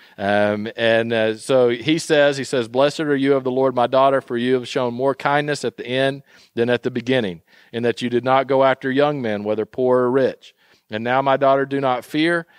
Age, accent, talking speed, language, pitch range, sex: 40-59, American, 235 wpm, English, 115-135 Hz, male